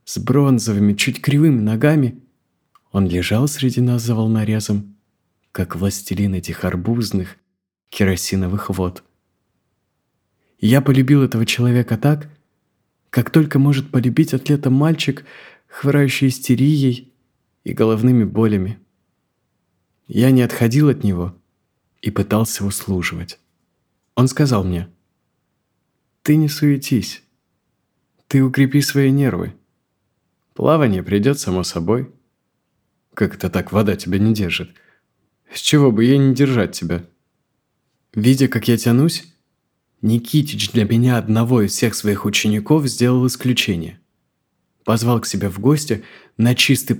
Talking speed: 115 wpm